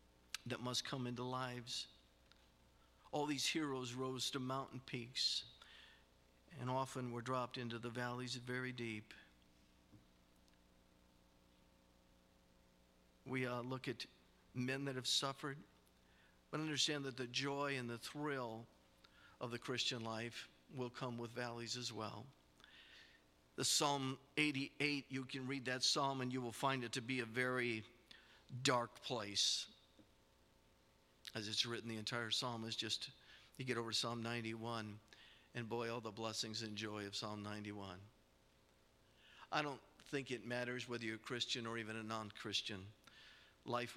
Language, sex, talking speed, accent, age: English, male, 140 wpm, American, 50-69